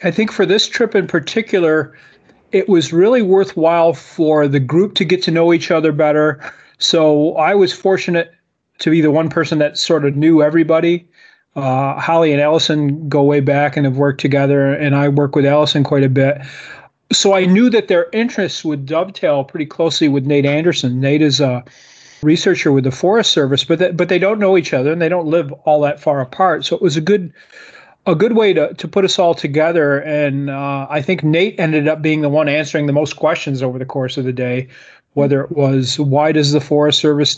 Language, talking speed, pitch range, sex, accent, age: English, 210 wpm, 140-170 Hz, male, American, 30-49